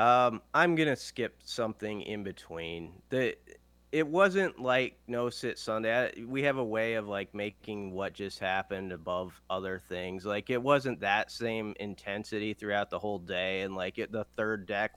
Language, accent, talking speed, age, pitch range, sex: English, American, 180 wpm, 30-49, 95-115 Hz, male